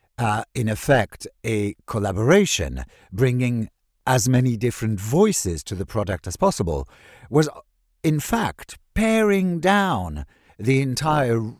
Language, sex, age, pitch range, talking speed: English, male, 60-79, 90-130 Hz, 115 wpm